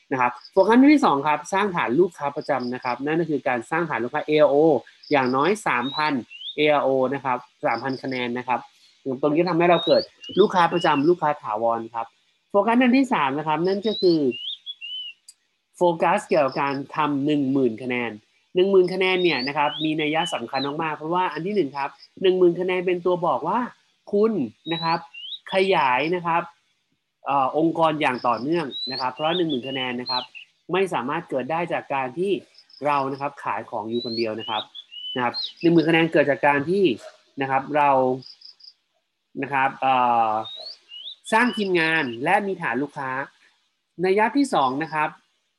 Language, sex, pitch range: Thai, male, 135-180 Hz